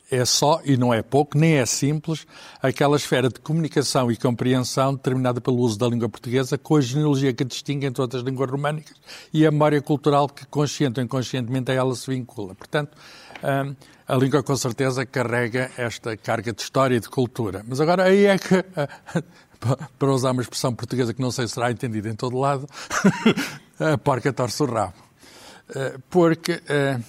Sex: male